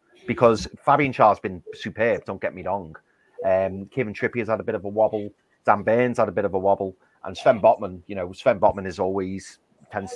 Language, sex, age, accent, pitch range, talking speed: English, male, 30-49, British, 105-140 Hz, 225 wpm